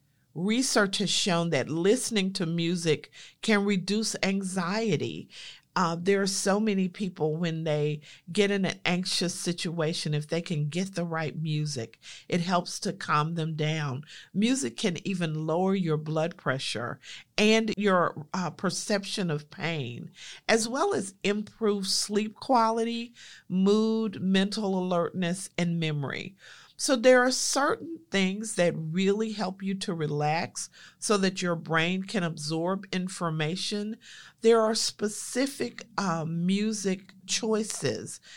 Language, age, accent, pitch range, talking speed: English, 50-69, American, 160-200 Hz, 130 wpm